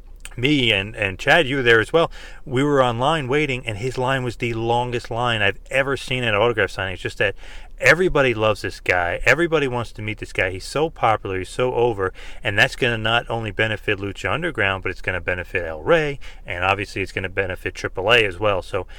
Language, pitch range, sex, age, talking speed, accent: English, 100-135 Hz, male, 30-49, 230 wpm, American